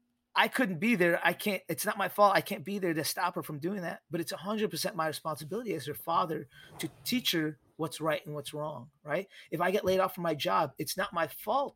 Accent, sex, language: American, male, English